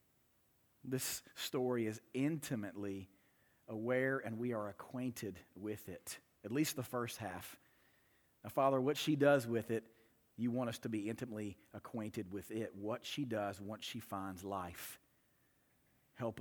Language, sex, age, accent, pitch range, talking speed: English, male, 40-59, American, 115-170 Hz, 145 wpm